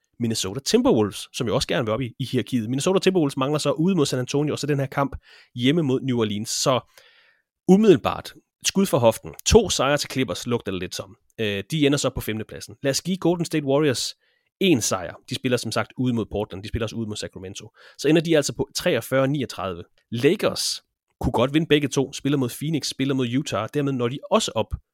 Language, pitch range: Danish, 115-145 Hz